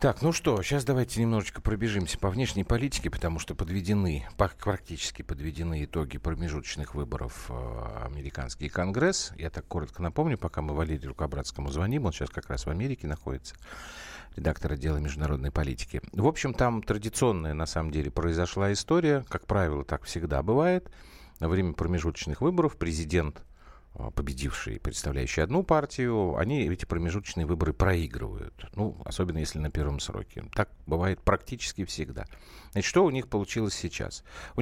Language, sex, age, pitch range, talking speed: Russian, male, 50-69, 80-110 Hz, 150 wpm